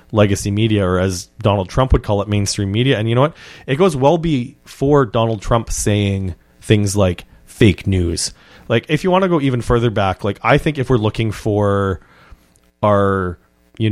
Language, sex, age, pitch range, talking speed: English, male, 30-49, 100-120 Hz, 190 wpm